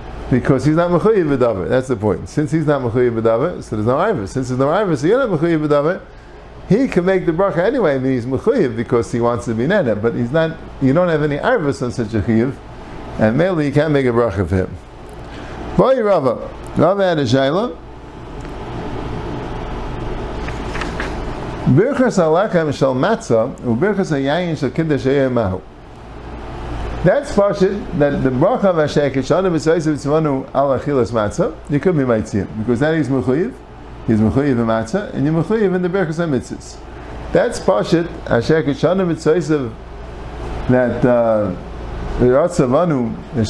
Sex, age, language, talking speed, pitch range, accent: male, 50-69, English, 165 wpm, 110-160 Hz, American